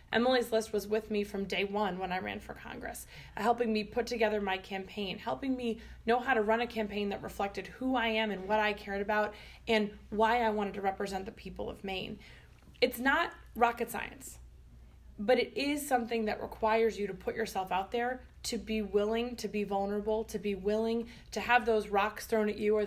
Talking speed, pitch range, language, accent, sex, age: 210 wpm, 200-230 Hz, English, American, female, 20-39